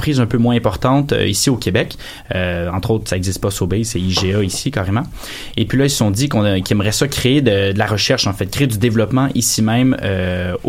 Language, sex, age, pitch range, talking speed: French, male, 20-39, 95-120 Hz, 235 wpm